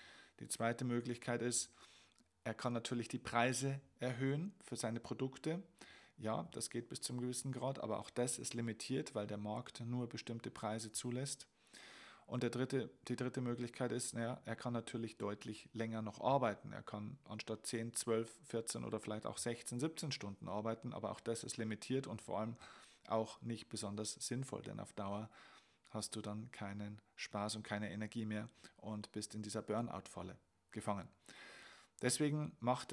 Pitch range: 110-130 Hz